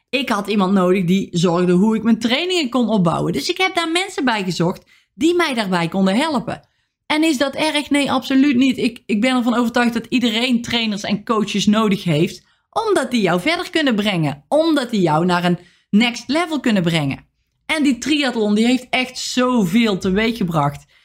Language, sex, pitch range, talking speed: Dutch, female, 180-255 Hz, 190 wpm